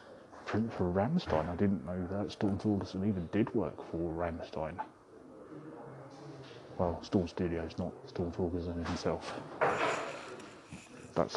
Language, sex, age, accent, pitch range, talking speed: English, male, 30-49, British, 90-100 Hz, 120 wpm